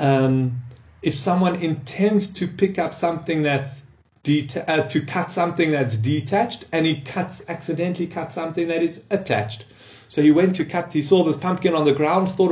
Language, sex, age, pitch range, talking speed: English, male, 30-49, 145-180 Hz, 180 wpm